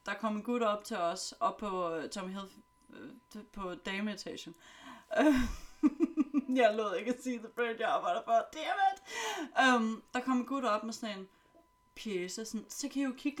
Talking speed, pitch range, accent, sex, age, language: 155 wpm, 205-270 Hz, native, female, 30-49, Danish